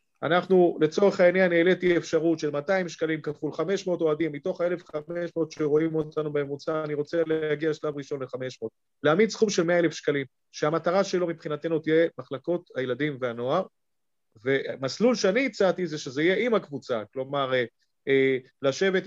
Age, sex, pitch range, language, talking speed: 30-49, male, 145-185 Hz, Hebrew, 145 wpm